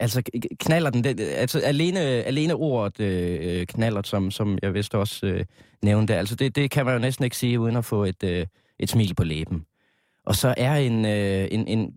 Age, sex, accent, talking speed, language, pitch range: 20-39, male, native, 200 wpm, Danish, 95-130 Hz